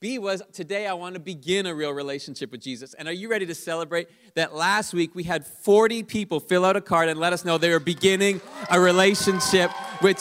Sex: male